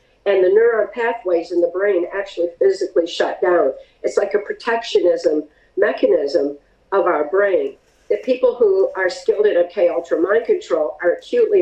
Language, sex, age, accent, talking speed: English, female, 50-69, American, 160 wpm